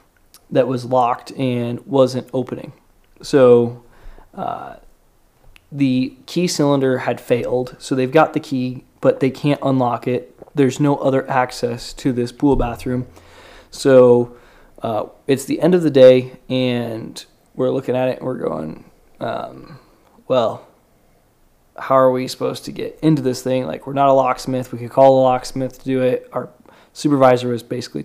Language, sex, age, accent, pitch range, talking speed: English, male, 20-39, American, 125-140 Hz, 160 wpm